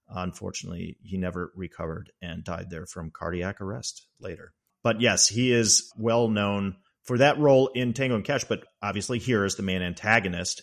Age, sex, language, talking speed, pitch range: 40-59, male, English, 175 wpm, 95-130 Hz